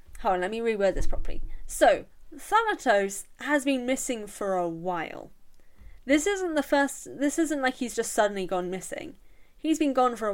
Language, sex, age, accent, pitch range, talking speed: English, female, 10-29, British, 190-265 Hz, 185 wpm